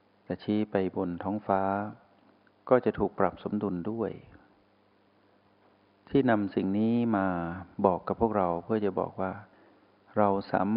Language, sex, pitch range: Thai, male, 95-105 Hz